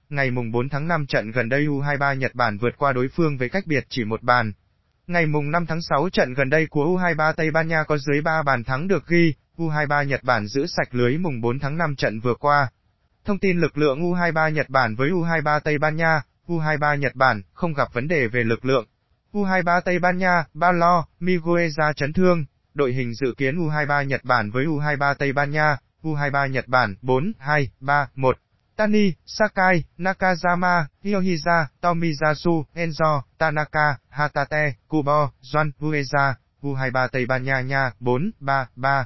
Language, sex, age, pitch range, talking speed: Vietnamese, male, 20-39, 130-165 Hz, 185 wpm